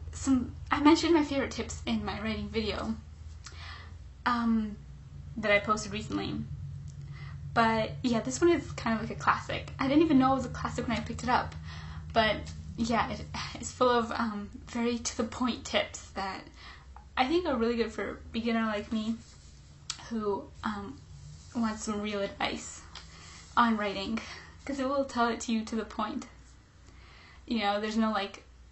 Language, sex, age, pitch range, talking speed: English, female, 10-29, 205-255 Hz, 175 wpm